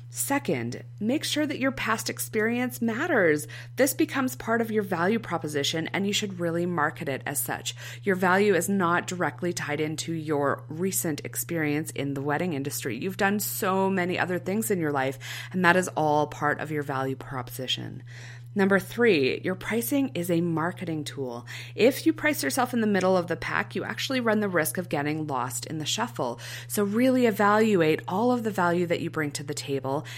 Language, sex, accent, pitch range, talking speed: English, female, American, 140-195 Hz, 195 wpm